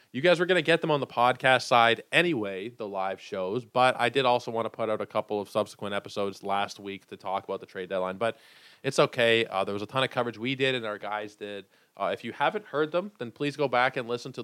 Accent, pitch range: American, 105-130 Hz